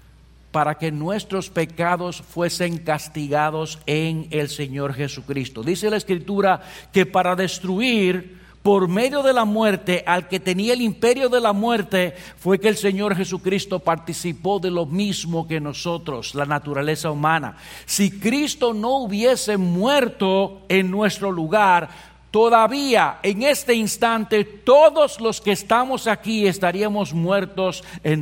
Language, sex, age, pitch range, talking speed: English, male, 60-79, 155-200 Hz, 135 wpm